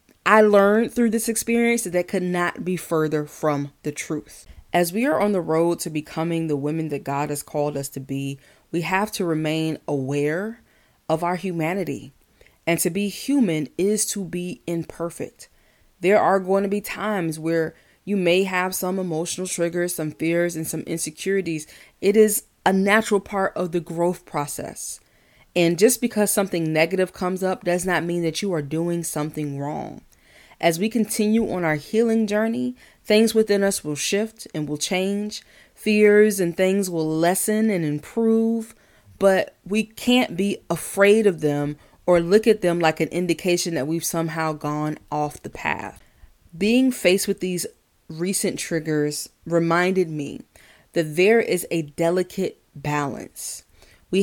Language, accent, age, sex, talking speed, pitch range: English, American, 20-39, female, 165 wpm, 160-205 Hz